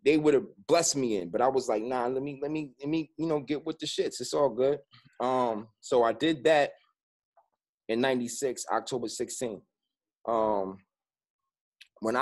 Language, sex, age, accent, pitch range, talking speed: English, male, 30-49, American, 120-150 Hz, 185 wpm